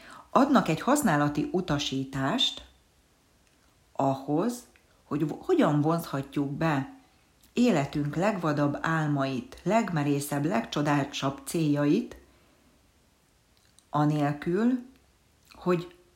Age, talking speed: 40-59, 65 wpm